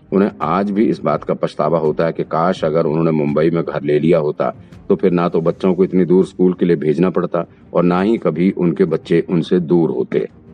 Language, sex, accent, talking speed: Hindi, male, native, 235 wpm